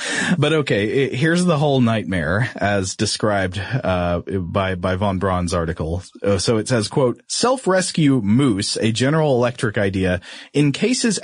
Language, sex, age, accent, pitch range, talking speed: English, male, 30-49, American, 100-135 Hz, 135 wpm